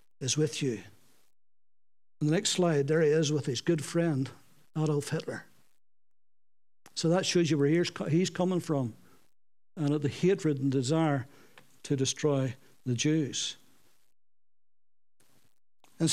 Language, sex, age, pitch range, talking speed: English, male, 60-79, 155-200 Hz, 125 wpm